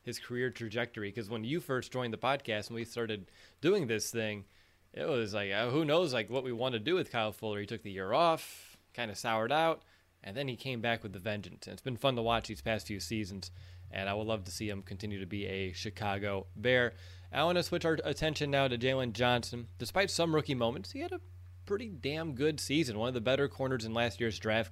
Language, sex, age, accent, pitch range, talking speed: English, male, 20-39, American, 100-130 Hz, 240 wpm